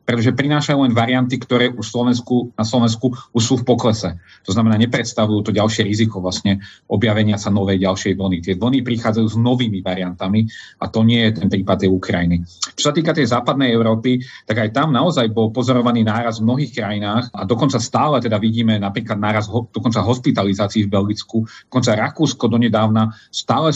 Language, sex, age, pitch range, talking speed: Slovak, male, 40-59, 105-125 Hz, 175 wpm